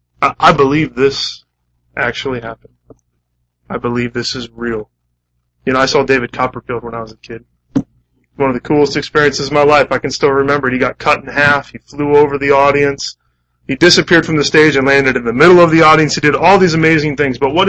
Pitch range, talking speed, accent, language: 105-150 Hz, 220 wpm, American, English